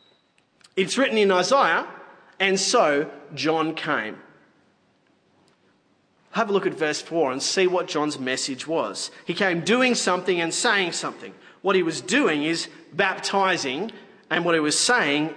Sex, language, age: male, English, 30-49